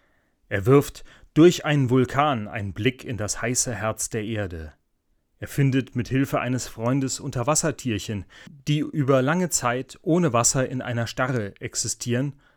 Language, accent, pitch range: German, German, 110-135 Hz